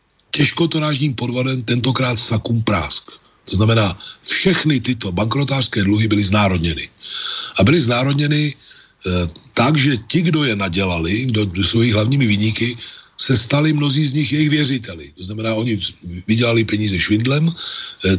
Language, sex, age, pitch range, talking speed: Slovak, male, 40-59, 100-135 Hz, 140 wpm